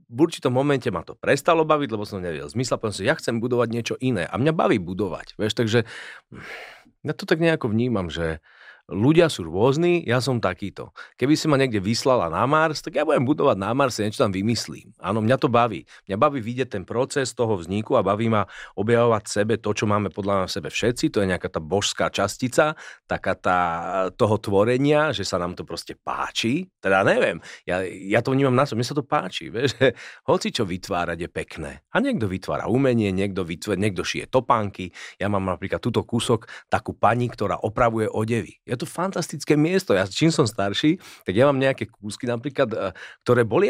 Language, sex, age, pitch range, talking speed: Slovak, male, 40-59, 105-145 Hz, 200 wpm